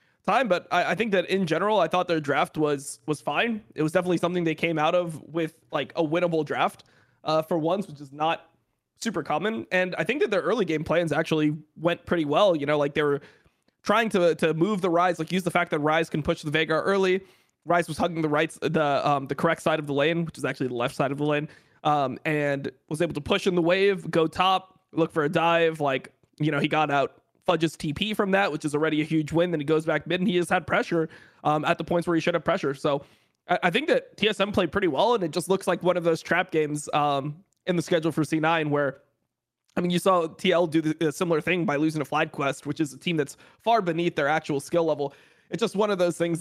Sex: male